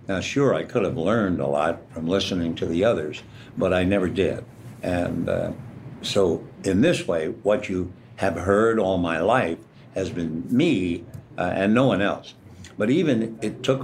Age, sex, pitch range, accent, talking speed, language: 60-79, male, 95-120 Hz, American, 180 wpm, English